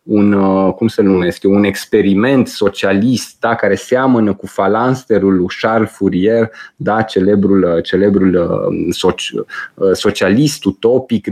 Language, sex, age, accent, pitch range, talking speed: Romanian, male, 20-39, native, 100-120 Hz, 100 wpm